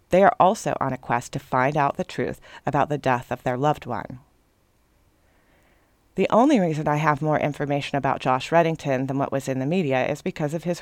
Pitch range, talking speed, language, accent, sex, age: 130-165 Hz, 210 wpm, English, American, female, 30-49